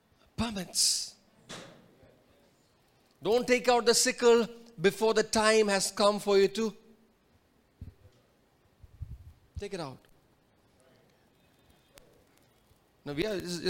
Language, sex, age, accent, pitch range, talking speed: English, male, 30-49, Indian, 170-230 Hz, 90 wpm